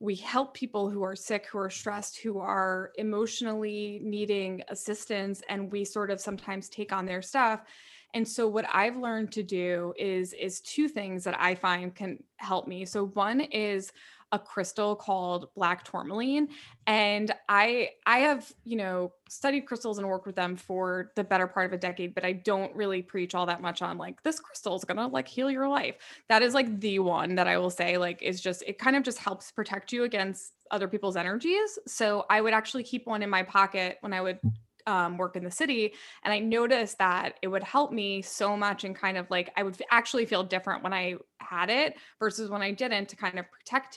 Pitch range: 185-225 Hz